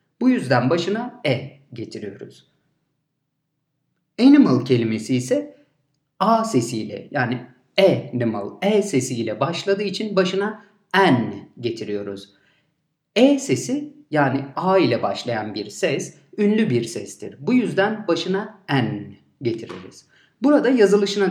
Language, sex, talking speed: Turkish, male, 105 wpm